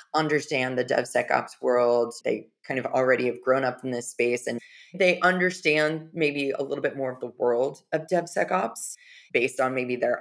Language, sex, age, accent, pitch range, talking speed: English, female, 20-39, American, 125-150 Hz, 180 wpm